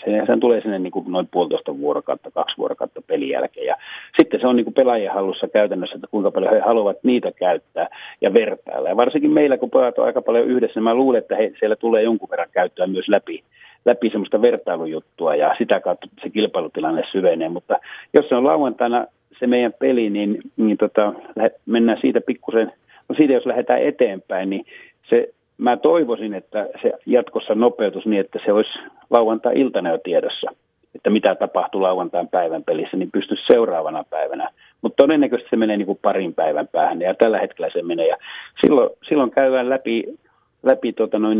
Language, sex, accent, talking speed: Finnish, male, native, 175 wpm